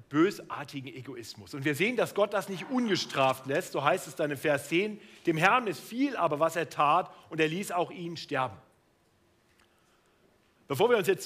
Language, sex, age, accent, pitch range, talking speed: German, male, 40-59, German, 135-170 Hz, 190 wpm